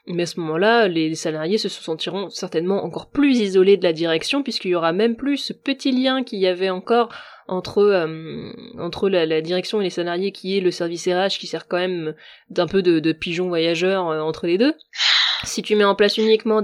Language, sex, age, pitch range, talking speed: French, female, 20-39, 175-210 Hz, 220 wpm